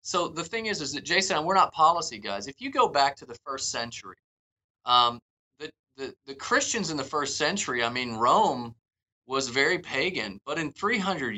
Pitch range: 115-165 Hz